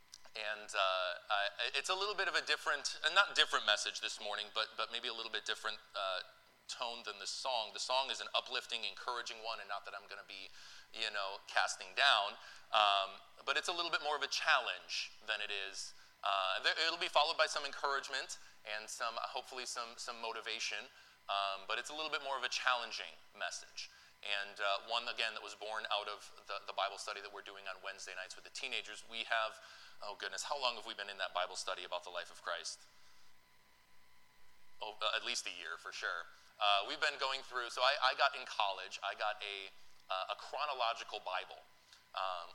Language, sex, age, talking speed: English, male, 20-39, 210 wpm